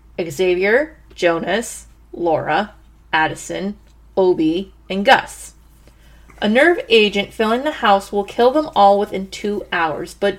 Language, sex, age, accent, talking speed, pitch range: English, female, 30-49, American, 120 wpm, 180-235 Hz